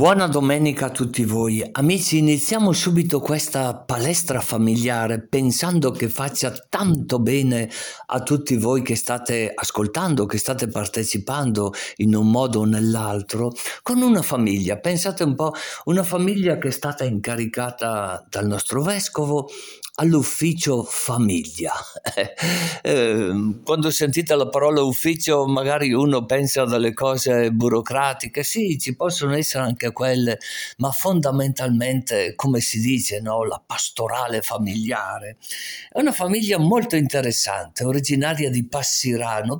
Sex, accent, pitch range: male, native, 120-165 Hz